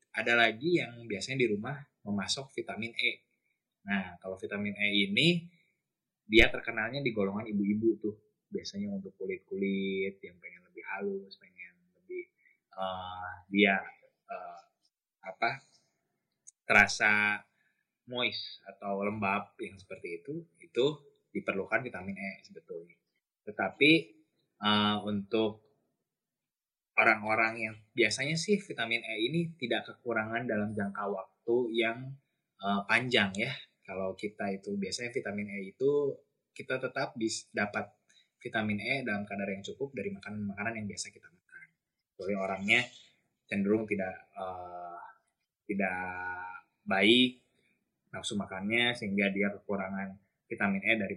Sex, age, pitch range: male, 20-39, 100-130 Hz